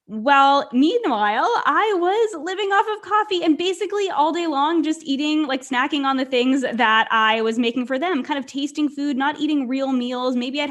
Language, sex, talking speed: English, female, 200 wpm